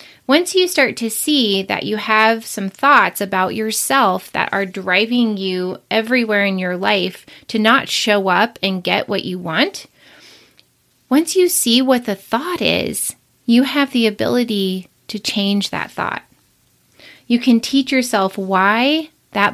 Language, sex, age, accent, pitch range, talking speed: English, female, 20-39, American, 195-255 Hz, 155 wpm